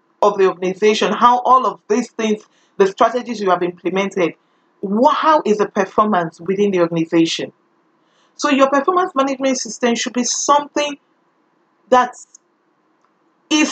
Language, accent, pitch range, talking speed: English, Nigerian, 190-250 Hz, 130 wpm